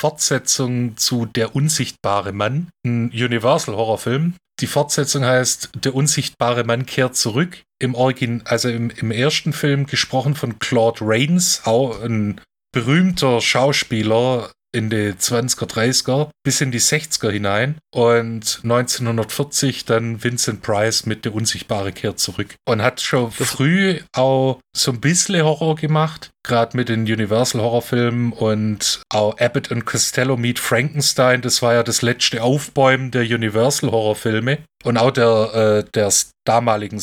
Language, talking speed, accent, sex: German, 135 wpm, German, male